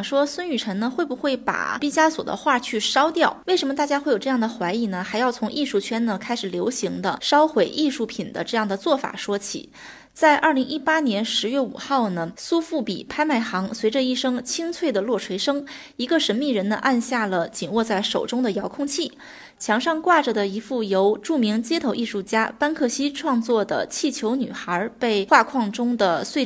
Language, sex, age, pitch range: Chinese, female, 20-39, 210-285 Hz